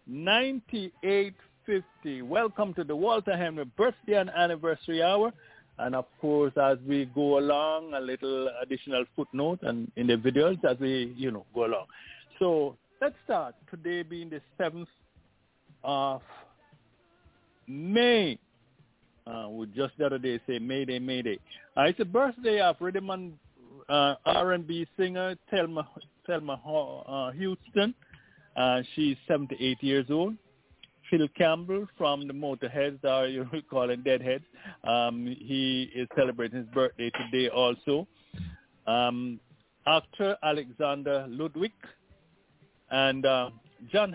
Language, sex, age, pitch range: English, male, 60-79, 130-170 Hz